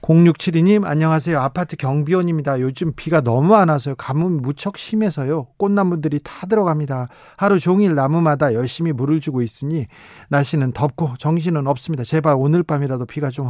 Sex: male